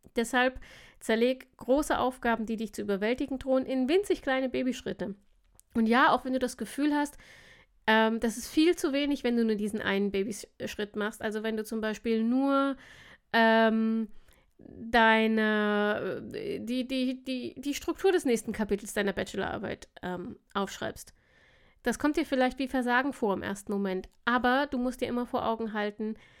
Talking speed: 155 wpm